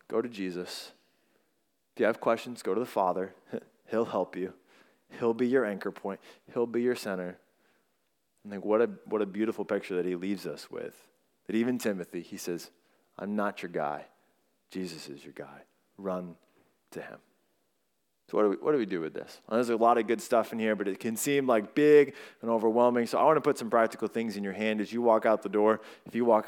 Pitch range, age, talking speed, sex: 100-120 Hz, 20-39, 225 wpm, male